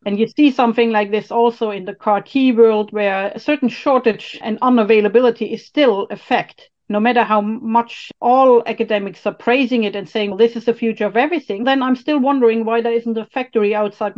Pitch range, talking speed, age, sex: 210-250 Hz, 205 wpm, 40-59, female